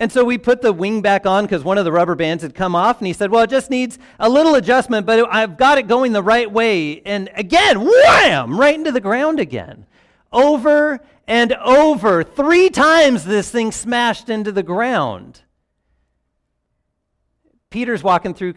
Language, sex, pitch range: English, male, 170-230 Hz